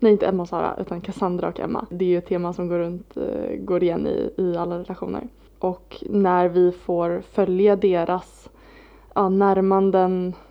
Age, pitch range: 20-39, 175-195 Hz